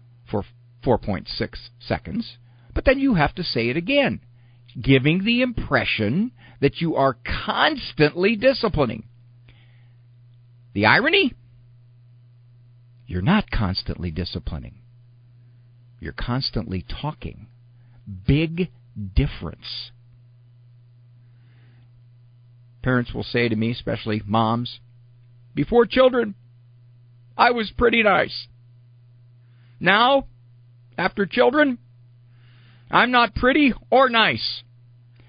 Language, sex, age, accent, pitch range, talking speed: English, male, 50-69, American, 120-165 Hz, 85 wpm